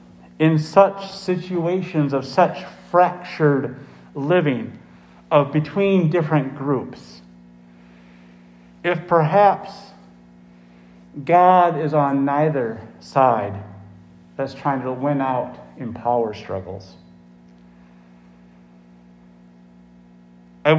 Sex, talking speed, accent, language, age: male, 80 wpm, American, English, 50-69